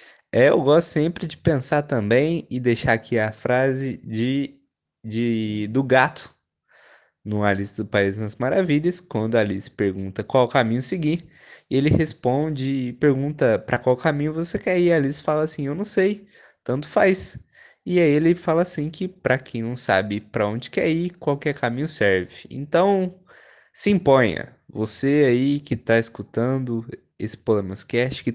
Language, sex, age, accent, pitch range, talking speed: Portuguese, male, 20-39, Brazilian, 115-155 Hz, 160 wpm